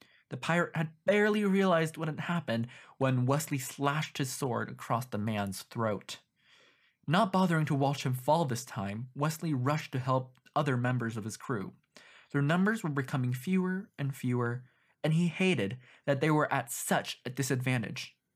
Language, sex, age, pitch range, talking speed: English, male, 20-39, 125-160 Hz, 165 wpm